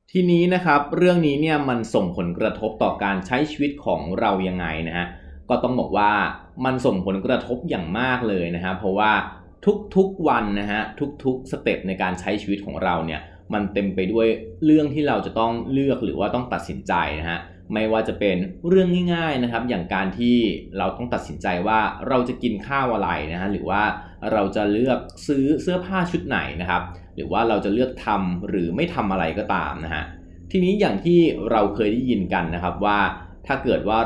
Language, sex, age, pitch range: Thai, male, 20-39, 90-125 Hz